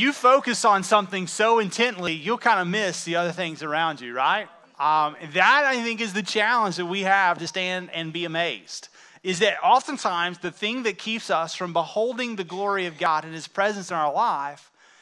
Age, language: 30-49, English